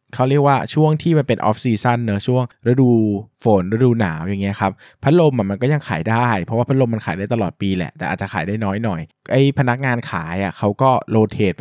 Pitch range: 95-120 Hz